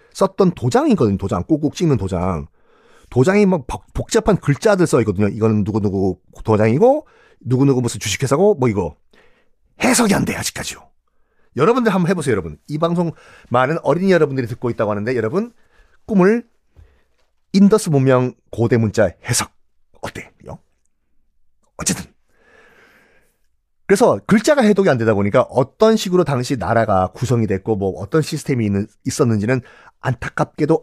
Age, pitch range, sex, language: 40-59, 110-180 Hz, male, Korean